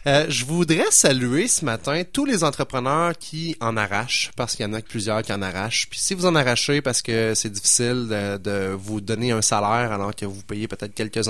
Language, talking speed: French, 225 wpm